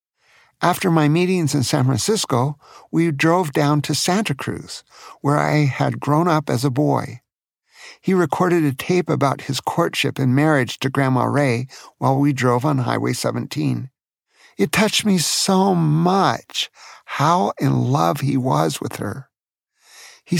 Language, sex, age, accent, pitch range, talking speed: English, male, 50-69, American, 135-175 Hz, 150 wpm